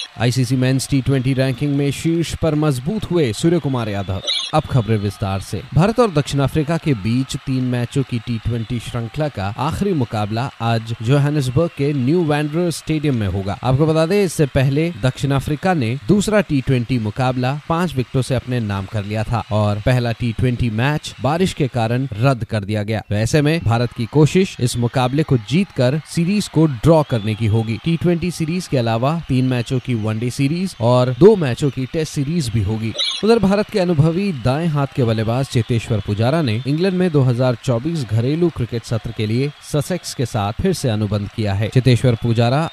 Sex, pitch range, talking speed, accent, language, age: male, 115-155 Hz, 185 wpm, native, Hindi, 30-49